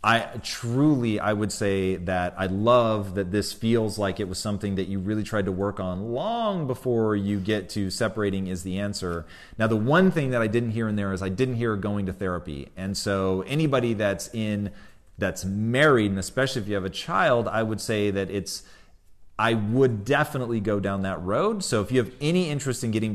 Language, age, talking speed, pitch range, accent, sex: English, 30-49, 215 wpm, 95-120 Hz, American, male